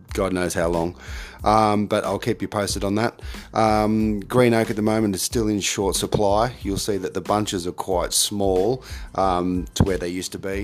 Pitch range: 90-110 Hz